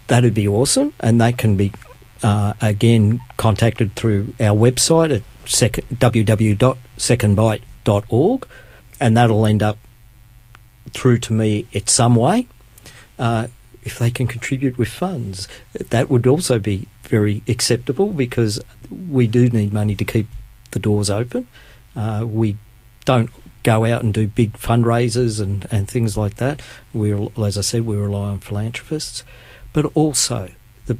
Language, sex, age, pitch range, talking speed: English, male, 50-69, 105-125 Hz, 145 wpm